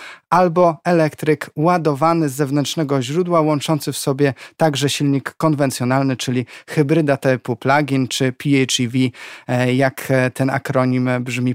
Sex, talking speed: male, 115 wpm